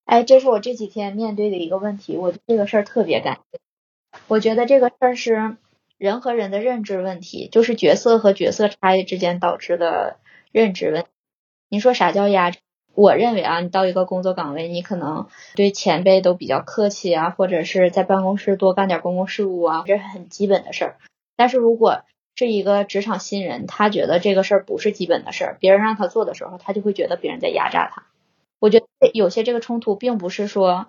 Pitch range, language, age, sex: 185-230 Hz, Chinese, 20-39, female